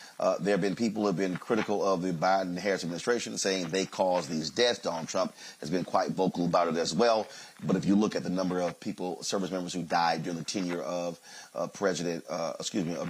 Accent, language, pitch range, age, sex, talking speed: American, English, 85-95 Hz, 40-59, male, 235 wpm